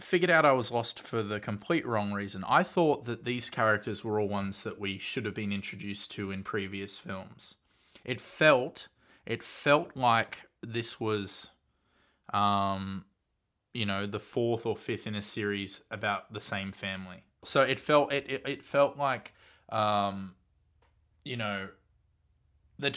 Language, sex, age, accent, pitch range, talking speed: English, male, 20-39, Australian, 100-125 Hz, 160 wpm